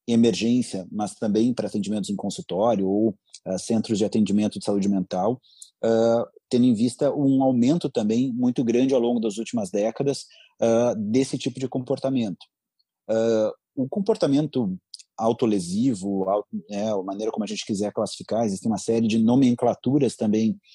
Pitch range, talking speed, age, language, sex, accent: 115-140 Hz, 160 wpm, 30-49, Portuguese, male, Brazilian